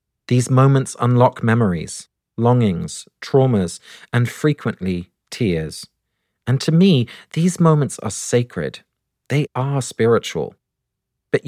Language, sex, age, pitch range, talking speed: English, male, 40-59, 105-140 Hz, 105 wpm